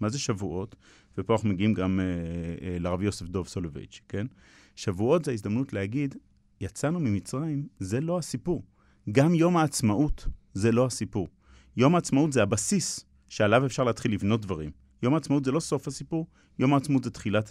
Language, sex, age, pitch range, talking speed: Hebrew, male, 30-49, 95-130 Hz, 165 wpm